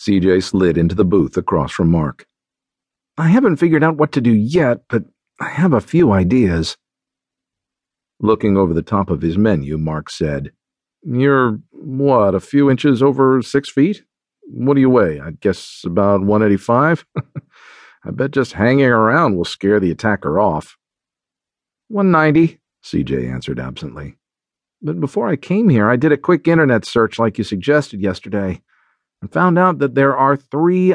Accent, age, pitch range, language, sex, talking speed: American, 50-69, 95-145 Hz, English, male, 160 wpm